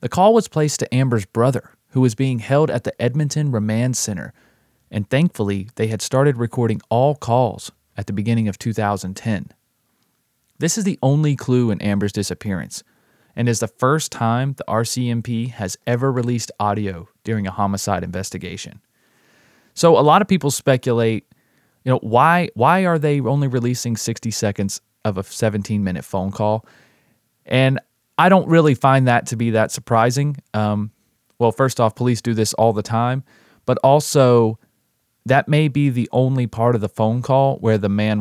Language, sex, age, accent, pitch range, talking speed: English, male, 30-49, American, 105-130 Hz, 170 wpm